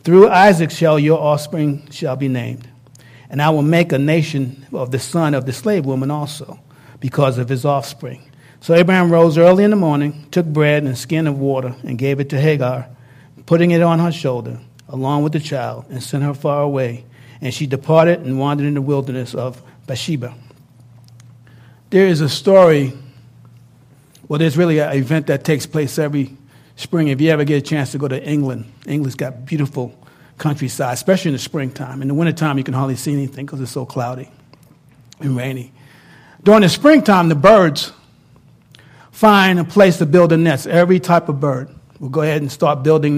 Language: English